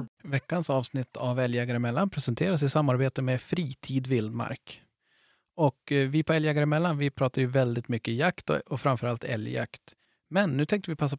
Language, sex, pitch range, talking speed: Swedish, male, 130-155 Hz, 165 wpm